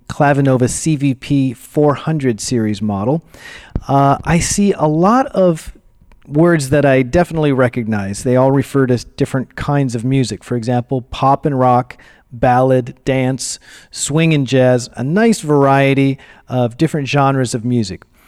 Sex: male